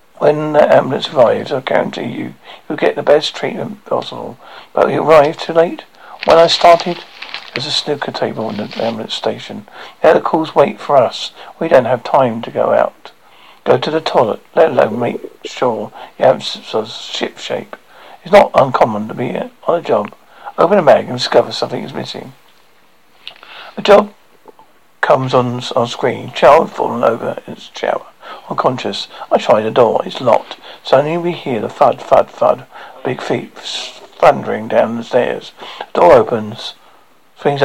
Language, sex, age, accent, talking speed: English, male, 50-69, British, 175 wpm